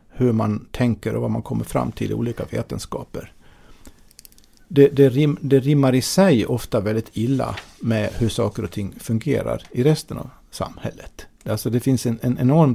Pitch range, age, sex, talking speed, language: 105-130 Hz, 50-69, male, 165 wpm, Swedish